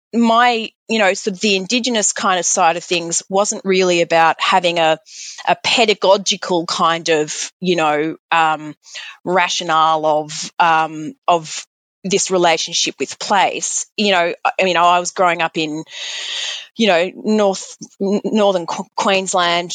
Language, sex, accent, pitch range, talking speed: English, female, Australian, 165-200 Hz, 140 wpm